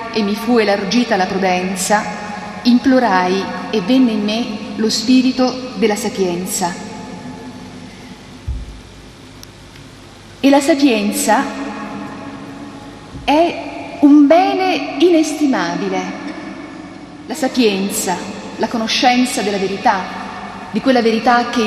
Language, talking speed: Italian, 90 wpm